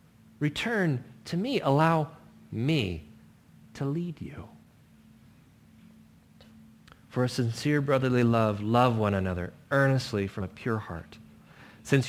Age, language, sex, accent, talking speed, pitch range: 30-49, English, male, American, 110 wpm, 110-155 Hz